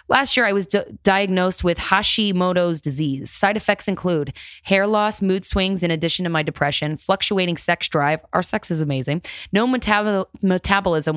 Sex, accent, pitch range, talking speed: female, American, 155-190 Hz, 155 wpm